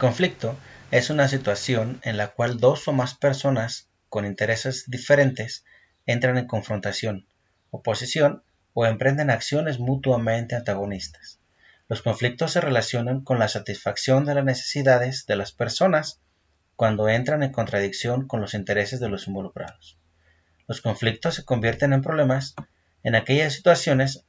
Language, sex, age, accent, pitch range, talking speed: Italian, male, 30-49, Mexican, 100-135 Hz, 135 wpm